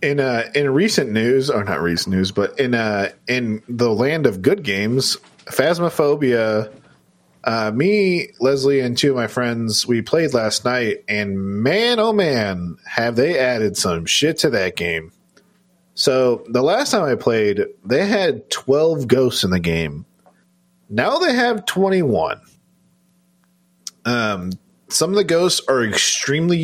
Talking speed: 150 wpm